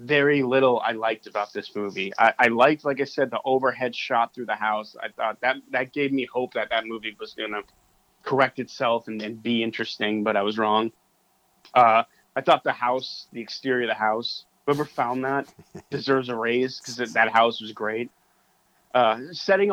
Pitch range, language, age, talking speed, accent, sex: 110-135 Hz, English, 20-39, 200 wpm, American, male